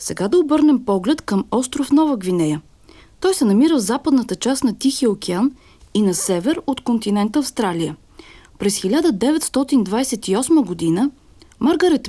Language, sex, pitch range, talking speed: Bulgarian, female, 205-295 Hz, 135 wpm